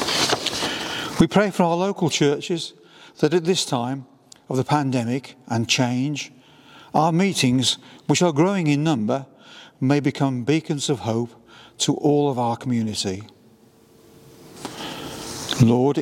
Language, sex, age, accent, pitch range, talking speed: English, male, 50-69, British, 115-145 Hz, 125 wpm